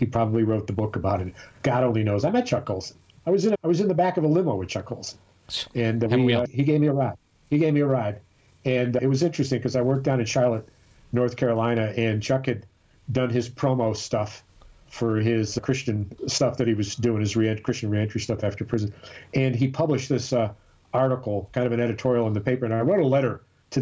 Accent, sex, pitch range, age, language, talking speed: American, male, 110-140 Hz, 50-69, English, 230 wpm